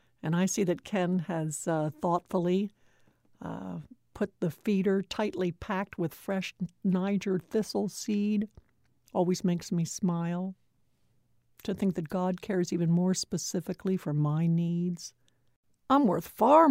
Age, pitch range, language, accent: 60-79, 170-210 Hz, English, American